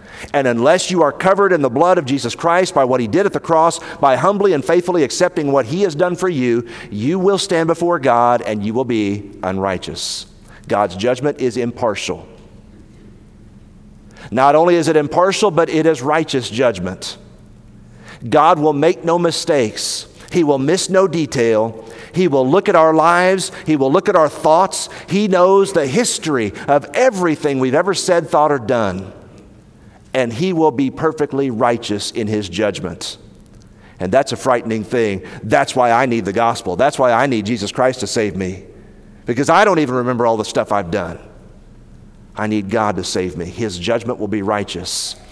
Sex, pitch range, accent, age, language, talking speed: male, 105-160 Hz, American, 50-69, English, 180 wpm